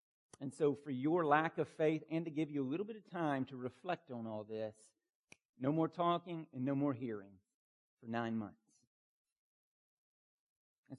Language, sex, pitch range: English, male, 130-175 Hz